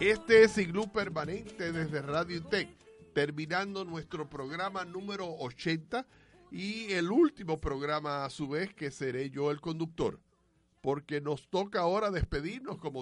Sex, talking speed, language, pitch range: male, 140 wpm, Spanish, 135-170 Hz